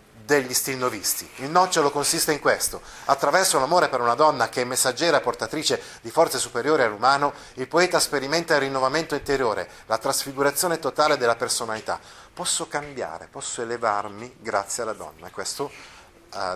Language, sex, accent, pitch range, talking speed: Italian, male, native, 110-160 Hz, 150 wpm